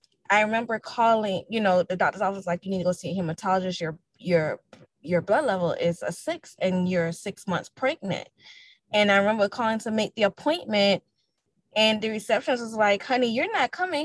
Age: 10-29